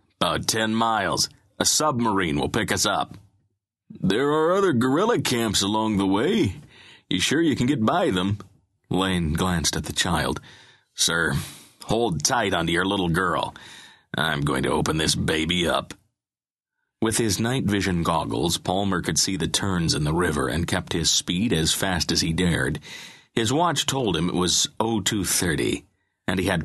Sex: male